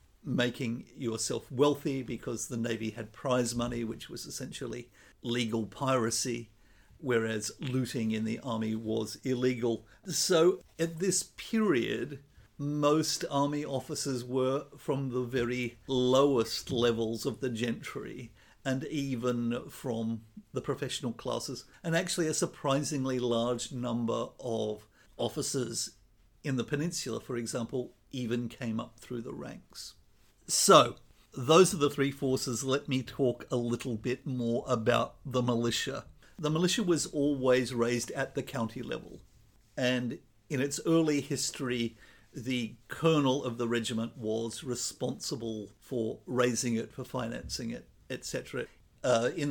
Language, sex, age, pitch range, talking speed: English, male, 50-69, 115-140 Hz, 130 wpm